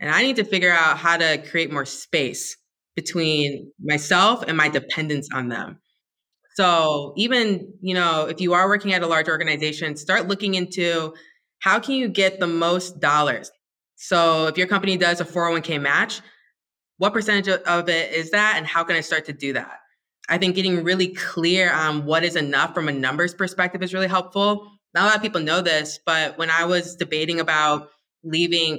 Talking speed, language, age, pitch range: 190 wpm, English, 20-39, 150-180 Hz